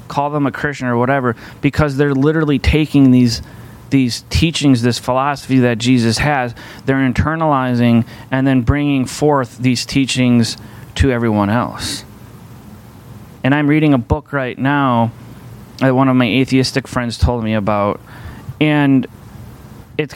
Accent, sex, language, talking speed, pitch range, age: American, male, English, 140 wpm, 115-135 Hz, 30-49